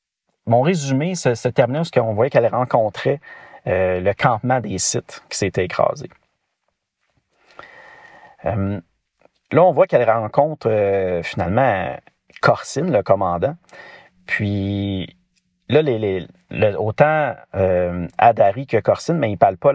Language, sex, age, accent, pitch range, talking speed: French, male, 40-59, Canadian, 95-135 Hz, 135 wpm